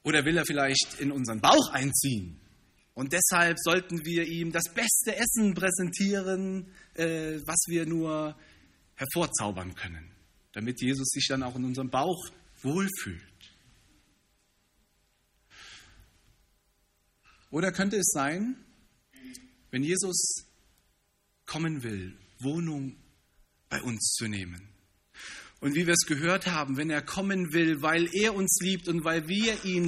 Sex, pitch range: male, 120-180 Hz